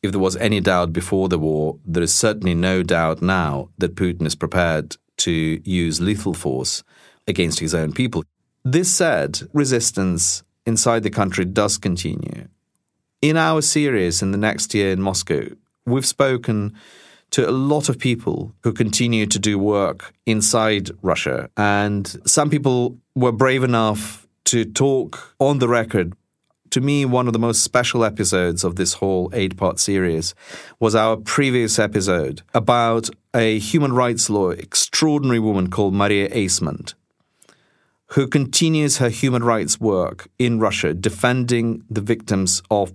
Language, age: English, 40-59